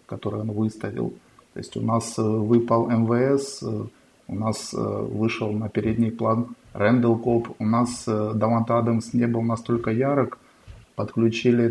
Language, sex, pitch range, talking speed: Russian, male, 110-120 Hz, 135 wpm